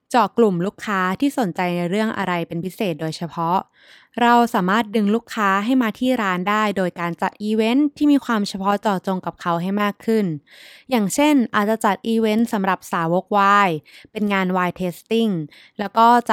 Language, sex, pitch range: Thai, female, 180-230 Hz